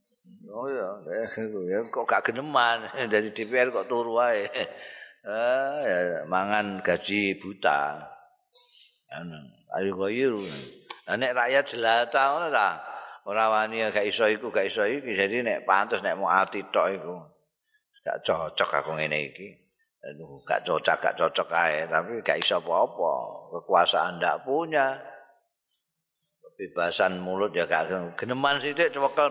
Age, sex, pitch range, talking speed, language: 50-69, male, 100-150 Hz, 135 wpm, Indonesian